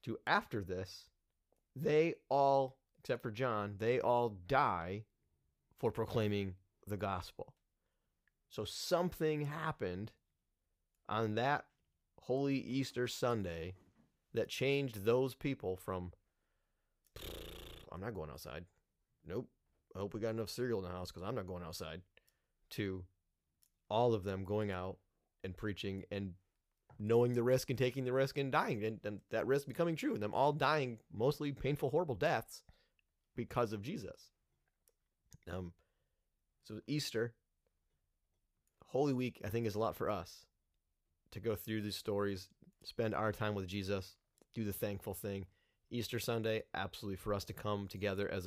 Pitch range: 90-120 Hz